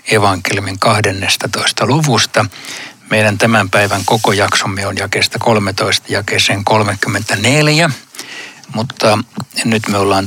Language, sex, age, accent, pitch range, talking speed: Finnish, male, 60-79, native, 105-125 Hz, 100 wpm